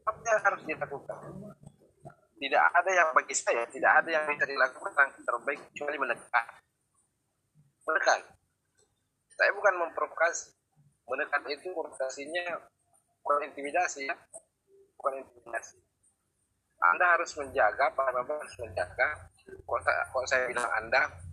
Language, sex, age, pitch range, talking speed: Indonesian, male, 20-39, 120-185 Hz, 105 wpm